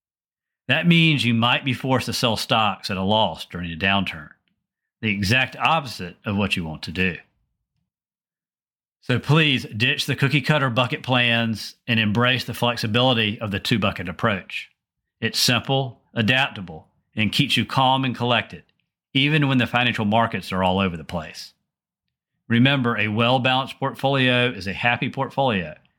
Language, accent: English, American